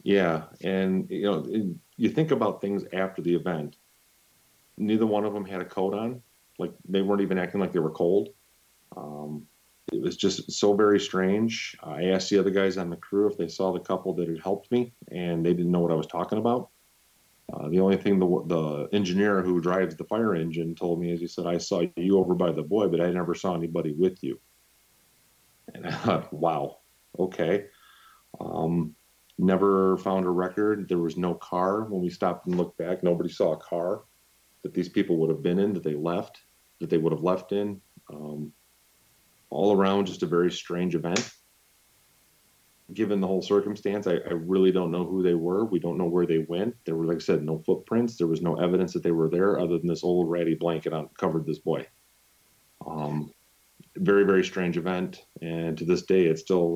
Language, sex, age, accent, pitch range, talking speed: English, male, 30-49, American, 85-95 Hz, 205 wpm